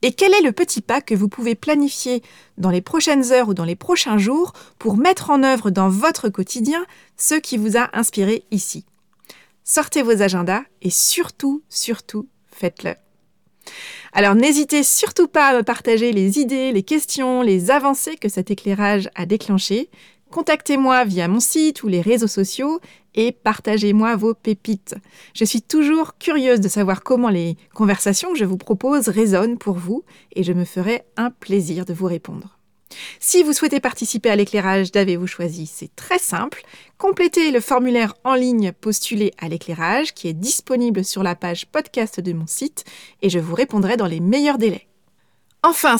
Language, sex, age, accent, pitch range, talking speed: French, female, 30-49, French, 200-280 Hz, 170 wpm